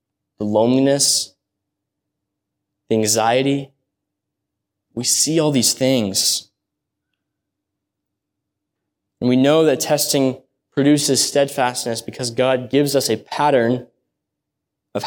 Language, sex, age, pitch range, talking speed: English, male, 20-39, 120-150 Hz, 90 wpm